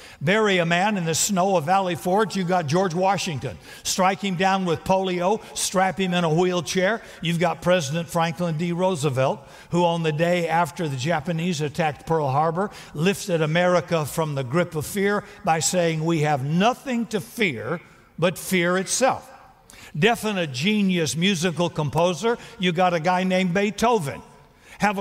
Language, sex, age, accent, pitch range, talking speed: English, male, 60-79, American, 160-190 Hz, 160 wpm